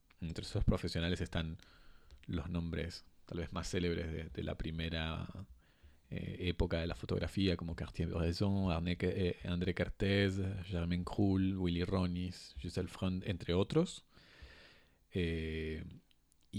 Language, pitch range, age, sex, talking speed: Spanish, 85-100 Hz, 30-49, male, 120 wpm